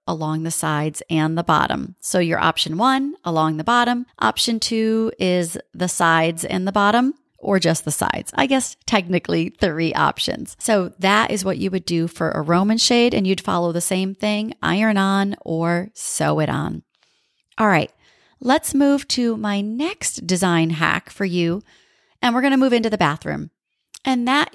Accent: American